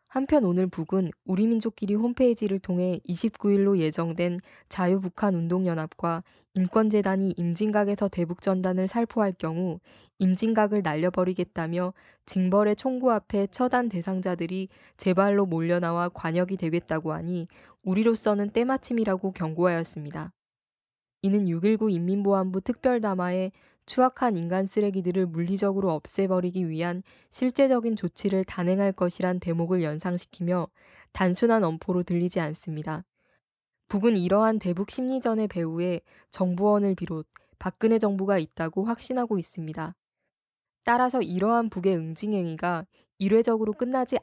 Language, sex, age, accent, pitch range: Korean, female, 20-39, native, 175-210 Hz